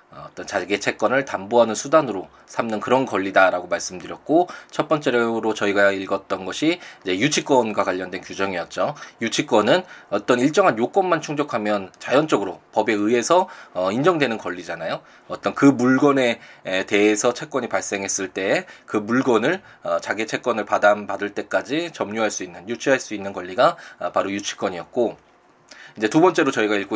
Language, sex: Korean, male